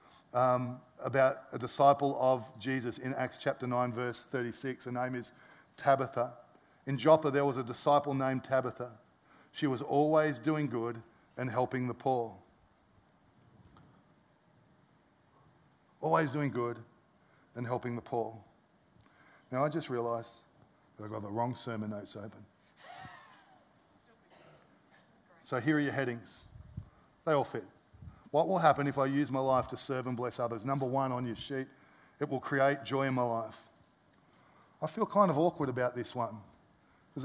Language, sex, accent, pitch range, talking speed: English, male, Australian, 125-145 Hz, 155 wpm